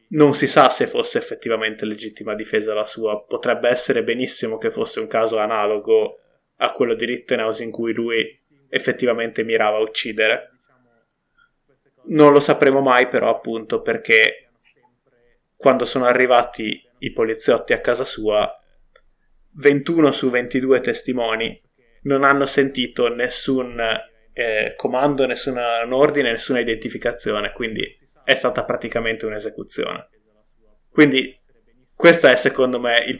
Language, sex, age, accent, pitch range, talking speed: Italian, male, 20-39, native, 115-150 Hz, 125 wpm